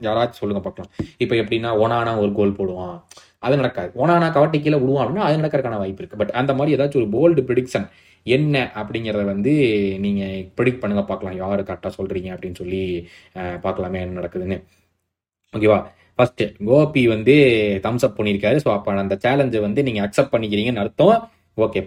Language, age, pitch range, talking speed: Tamil, 20-39, 105-170 Hz, 160 wpm